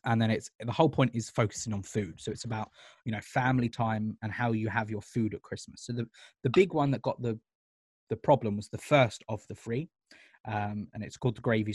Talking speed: 235 wpm